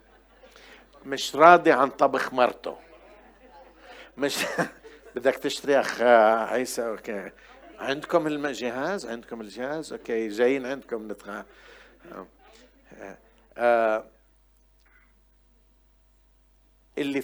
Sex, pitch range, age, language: male, 115-175 Hz, 60-79, Arabic